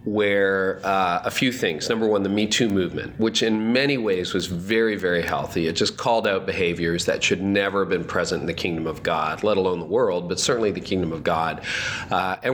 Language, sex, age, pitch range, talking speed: English, male, 40-59, 95-115 Hz, 225 wpm